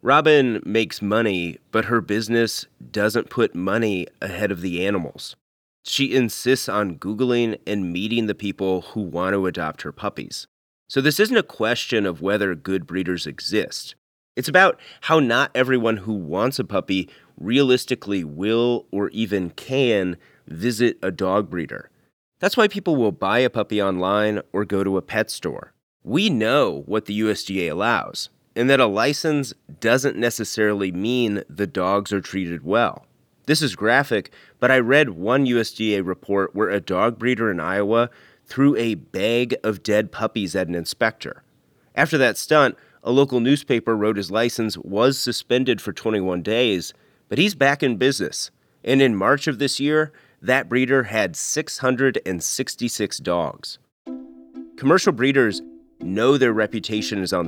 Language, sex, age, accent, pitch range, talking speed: English, male, 30-49, American, 100-125 Hz, 155 wpm